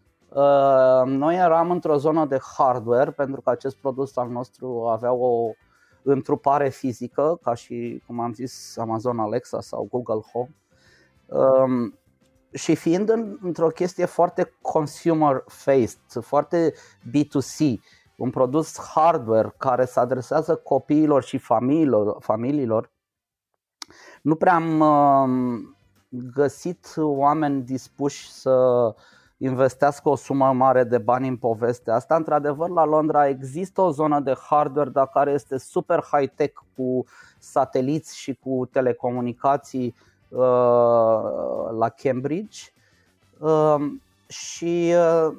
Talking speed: 105 wpm